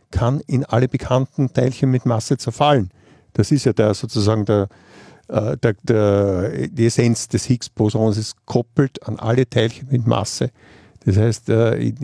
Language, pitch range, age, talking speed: German, 105-125 Hz, 50-69, 165 wpm